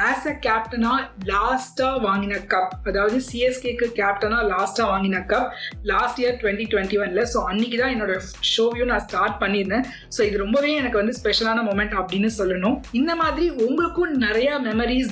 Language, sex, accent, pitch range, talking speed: Tamil, female, native, 205-255 Hz, 155 wpm